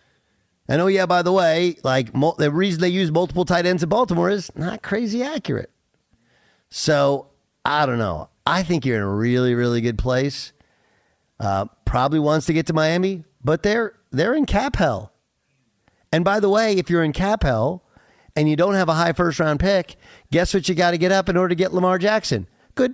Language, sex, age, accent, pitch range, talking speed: English, male, 50-69, American, 125-180 Hz, 205 wpm